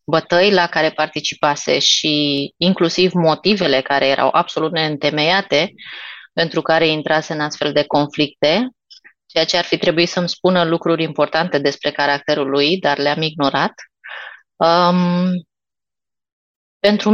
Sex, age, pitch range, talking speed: female, 20-39, 155-190 Hz, 120 wpm